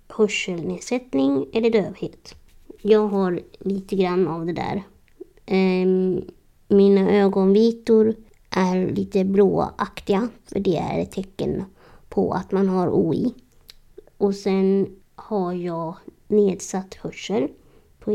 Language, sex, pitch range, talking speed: Swedish, male, 185-210 Hz, 110 wpm